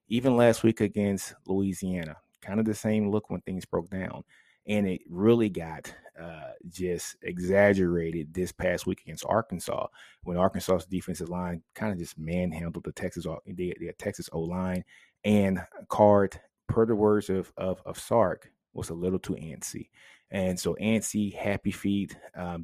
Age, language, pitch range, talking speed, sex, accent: 30-49, English, 90-100 Hz, 155 wpm, male, American